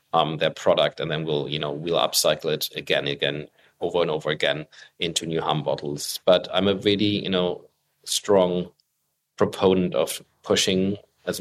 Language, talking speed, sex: English, 170 wpm, male